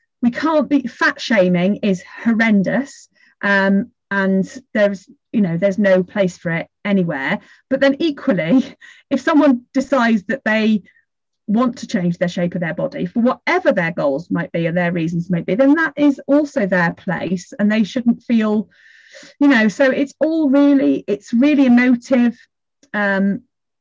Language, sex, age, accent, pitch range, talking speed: English, female, 30-49, British, 200-275 Hz, 165 wpm